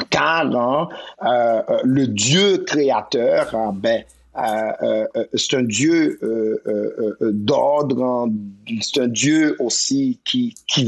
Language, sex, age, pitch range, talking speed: French, male, 50-69, 120-190 Hz, 125 wpm